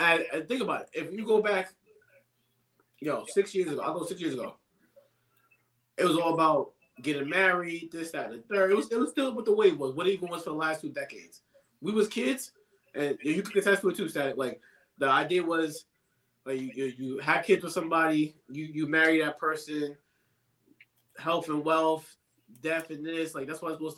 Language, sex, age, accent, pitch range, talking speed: English, male, 20-39, American, 140-190 Hz, 215 wpm